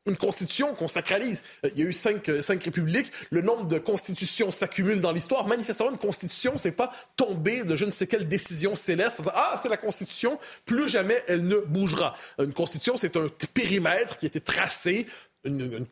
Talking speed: 190 wpm